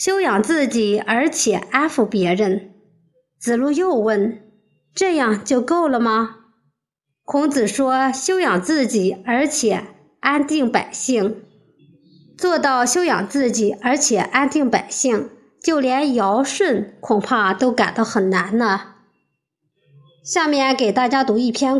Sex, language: male, Chinese